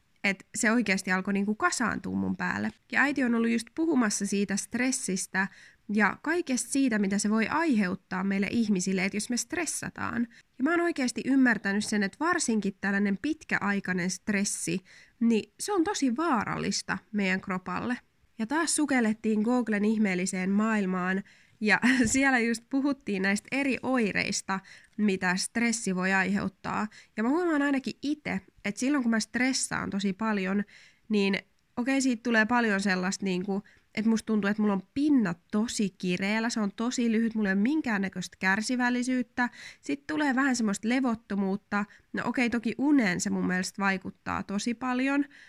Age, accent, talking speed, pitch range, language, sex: 20-39, native, 150 wpm, 195-250 Hz, Finnish, female